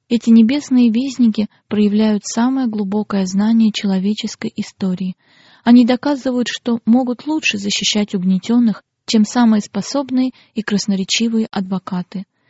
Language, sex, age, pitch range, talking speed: Russian, female, 20-39, 195-225 Hz, 105 wpm